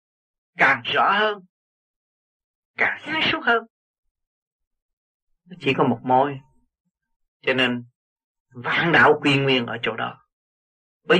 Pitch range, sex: 155-245 Hz, male